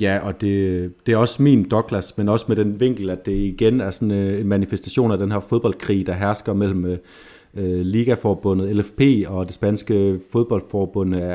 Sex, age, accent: male, 30-49, native